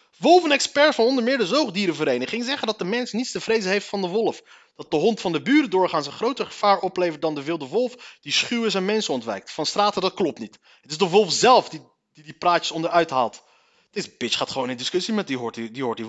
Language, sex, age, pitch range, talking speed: Dutch, male, 30-49, 165-225 Hz, 240 wpm